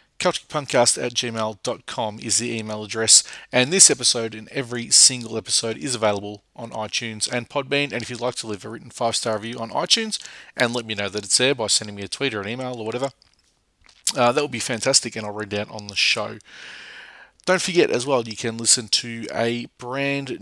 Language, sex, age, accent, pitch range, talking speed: English, male, 30-49, Australian, 110-135 Hz, 210 wpm